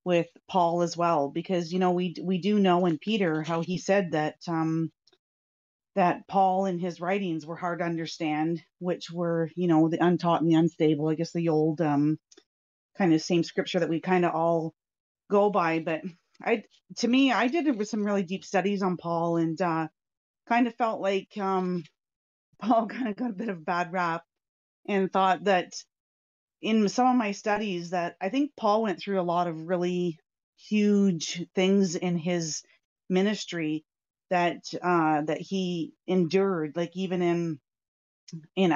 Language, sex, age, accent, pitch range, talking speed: English, female, 30-49, American, 165-195 Hz, 180 wpm